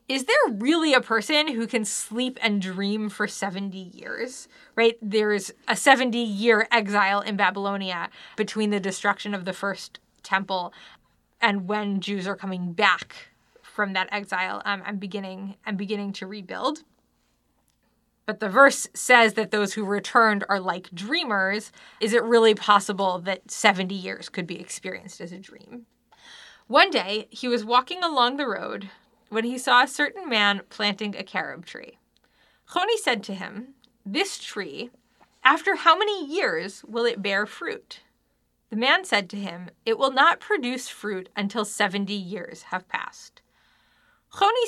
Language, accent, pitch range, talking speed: English, American, 200-245 Hz, 155 wpm